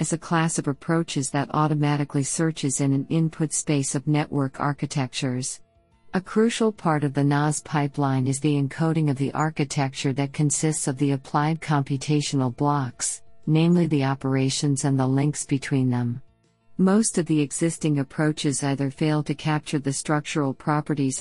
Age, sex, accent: 50-69, female, American